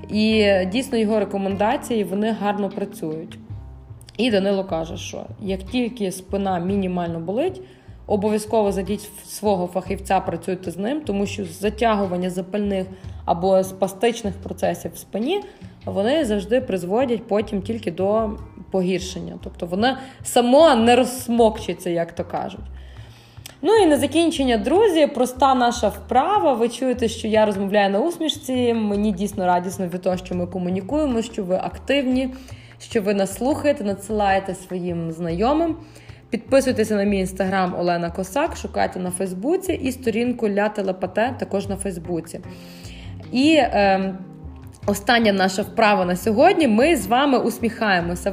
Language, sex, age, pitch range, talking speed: Ukrainian, female, 20-39, 185-235 Hz, 135 wpm